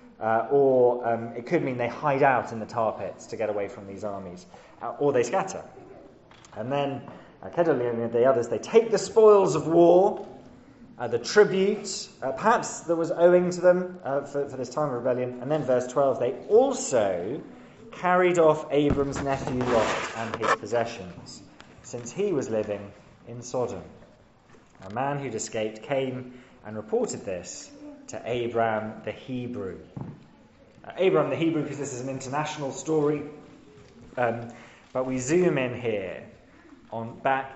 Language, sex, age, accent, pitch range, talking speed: English, male, 20-39, British, 115-170 Hz, 160 wpm